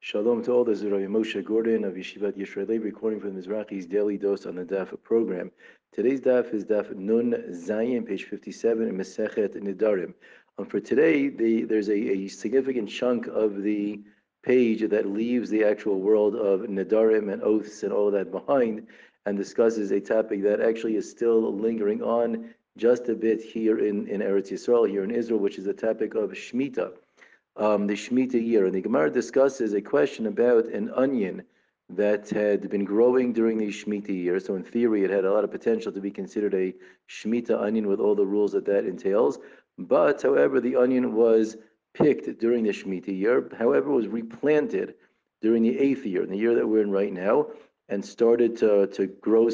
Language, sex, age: English, male, 50-69